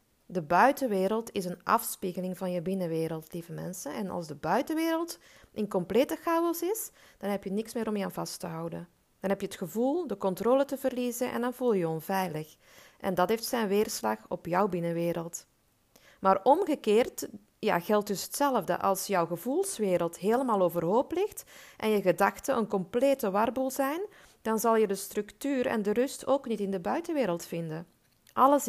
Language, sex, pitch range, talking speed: Dutch, female, 185-255 Hz, 180 wpm